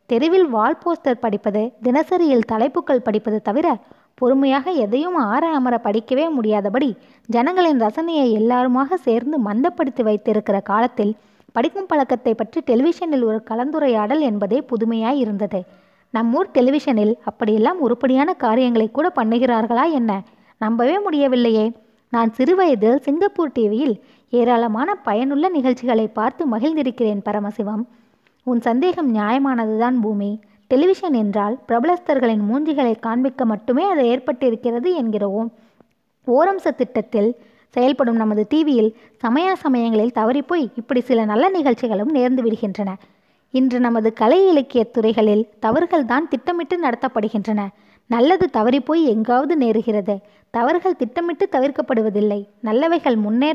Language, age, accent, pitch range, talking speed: Tamil, 20-39, native, 220-285 Hz, 105 wpm